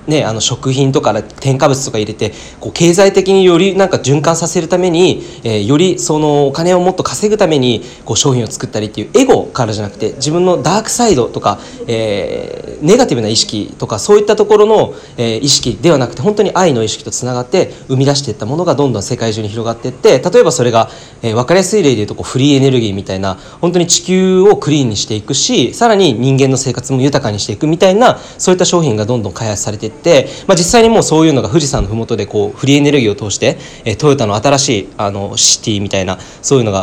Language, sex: Japanese, male